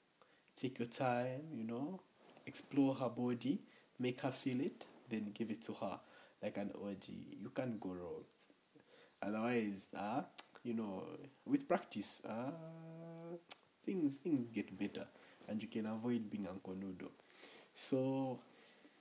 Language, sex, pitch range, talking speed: English, male, 100-120 Hz, 140 wpm